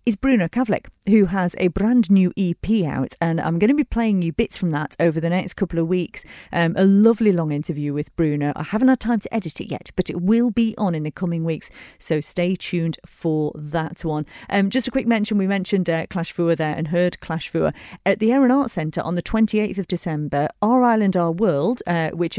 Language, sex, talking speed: English, female, 235 wpm